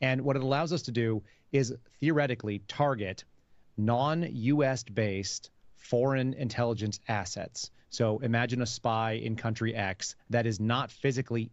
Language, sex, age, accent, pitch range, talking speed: English, male, 30-49, American, 105-130 Hz, 130 wpm